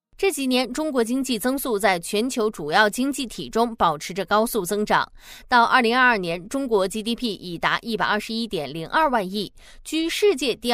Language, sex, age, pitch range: Chinese, female, 20-39, 210-280 Hz